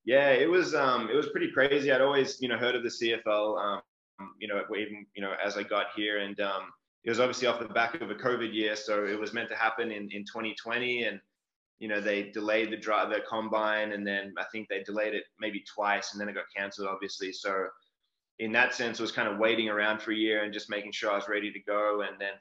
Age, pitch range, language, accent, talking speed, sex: 20-39, 100-110 Hz, English, Australian, 255 wpm, male